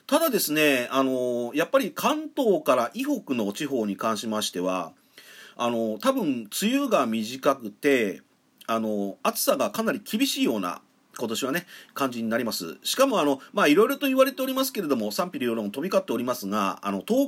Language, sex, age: Japanese, male, 40-59